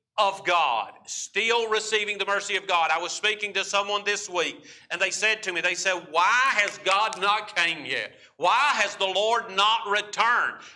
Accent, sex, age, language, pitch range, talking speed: American, male, 50-69, English, 155-210 Hz, 190 wpm